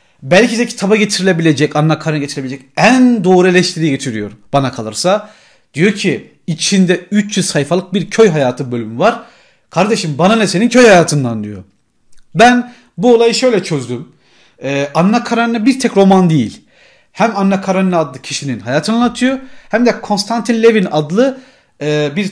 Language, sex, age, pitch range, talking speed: Turkish, male, 40-59, 145-220 Hz, 150 wpm